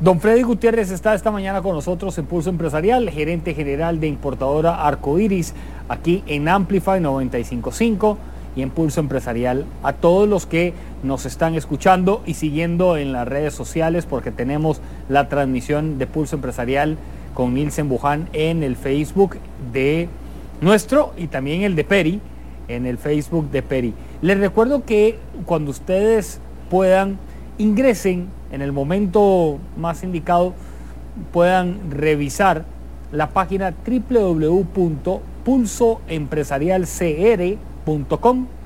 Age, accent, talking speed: 40-59, Mexican, 125 wpm